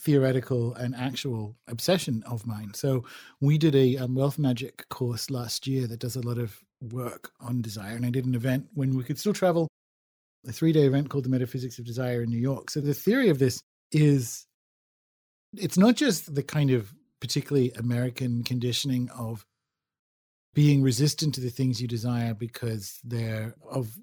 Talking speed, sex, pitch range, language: 175 wpm, male, 120-145 Hz, English